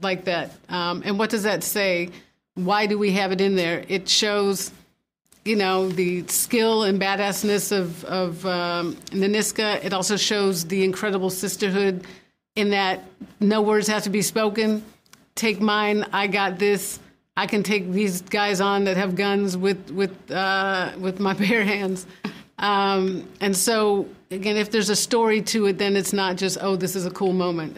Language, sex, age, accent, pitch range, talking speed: English, female, 50-69, American, 185-205 Hz, 175 wpm